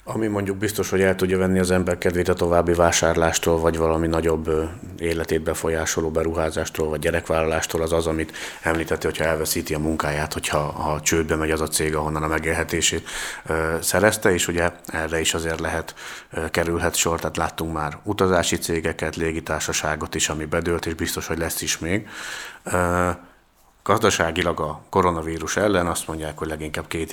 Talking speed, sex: 160 wpm, male